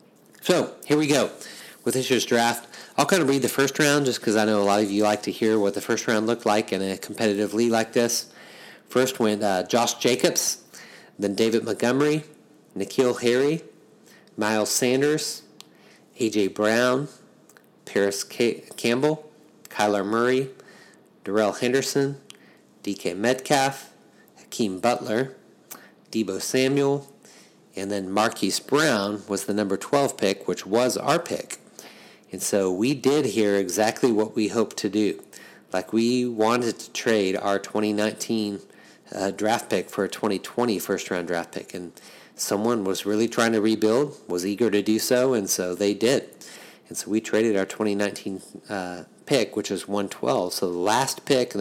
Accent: American